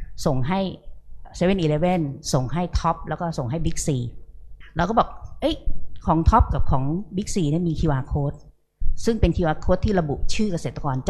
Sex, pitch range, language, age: female, 140-185 Hz, Thai, 30-49